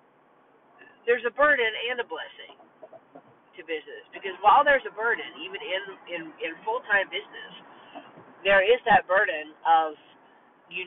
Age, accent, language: 40-59, American, English